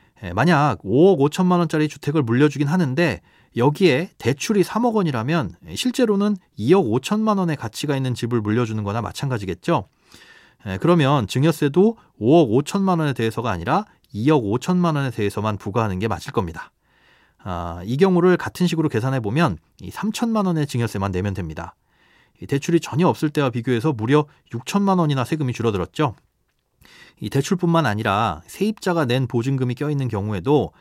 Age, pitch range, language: 30-49, 115-175 Hz, Korean